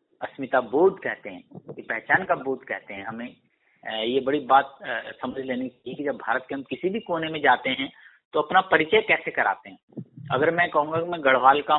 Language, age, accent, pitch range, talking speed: Hindi, 50-69, native, 150-220 Hz, 200 wpm